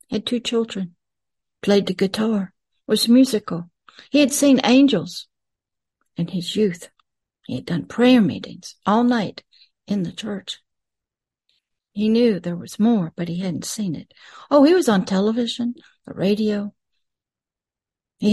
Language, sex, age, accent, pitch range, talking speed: English, female, 60-79, American, 190-240 Hz, 140 wpm